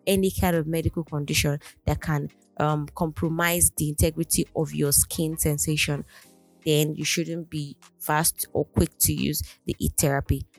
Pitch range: 145-165 Hz